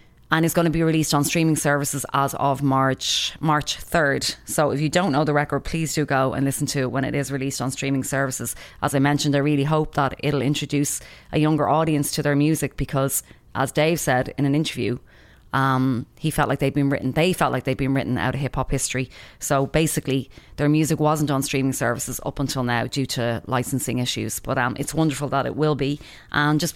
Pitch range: 135-155 Hz